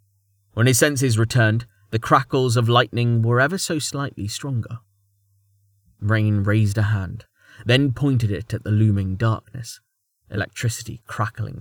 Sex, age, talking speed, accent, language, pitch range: male, 20-39, 135 wpm, British, English, 100-120 Hz